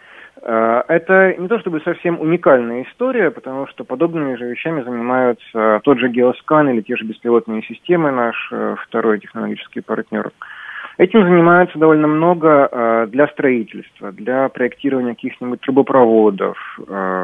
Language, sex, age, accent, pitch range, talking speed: Russian, male, 30-49, native, 115-165 Hz, 120 wpm